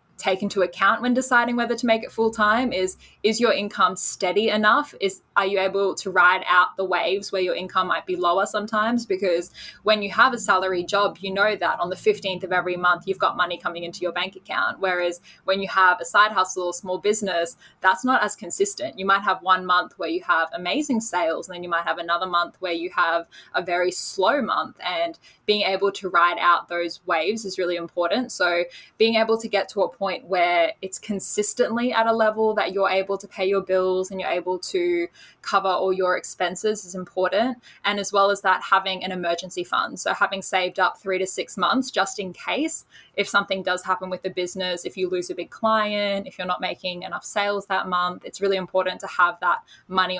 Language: English